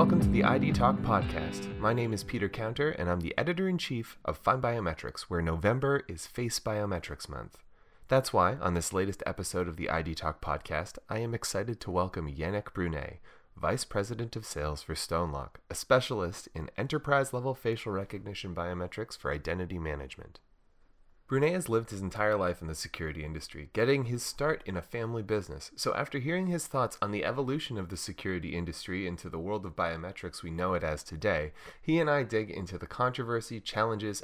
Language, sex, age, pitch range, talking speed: English, male, 30-49, 85-120 Hz, 185 wpm